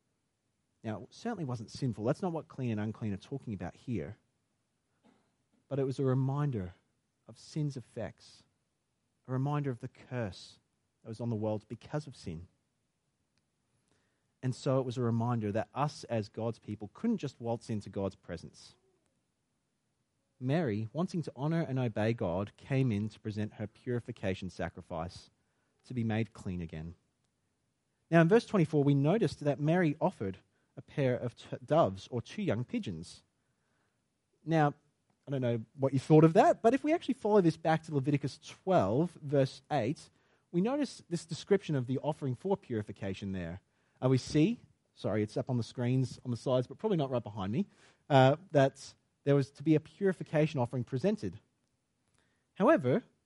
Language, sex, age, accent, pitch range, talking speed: English, male, 30-49, Australian, 110-150 Hz, 170 wpm